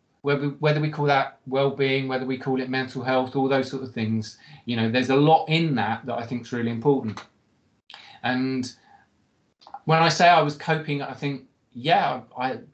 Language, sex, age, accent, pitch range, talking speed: English, male, 30-49, British, 125-150 Hz, 200 wpm